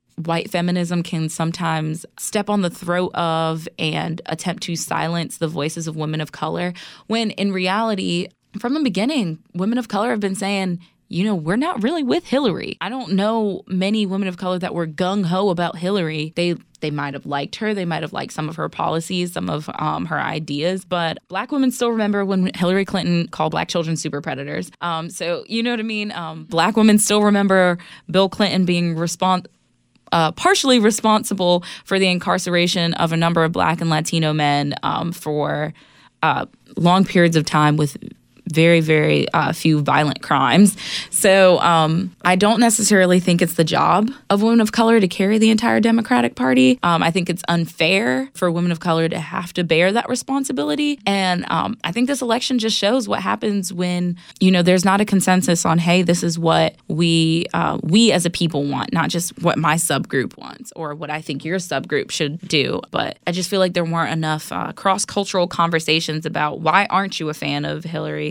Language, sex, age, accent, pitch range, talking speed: English, female, 20-39, American, 160-200 Hz, 195 wpm